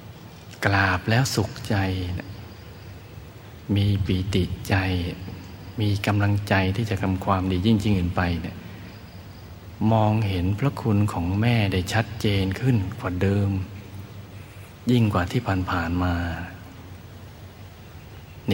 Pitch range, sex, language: 95-105 Hz, male, Thai